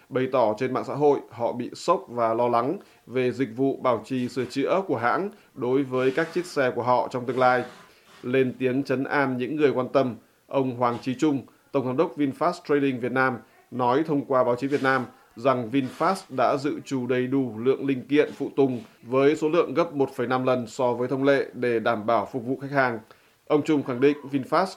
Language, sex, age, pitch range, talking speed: Vietnamese, male, 20-39, 125-140 Hz, 220 wpm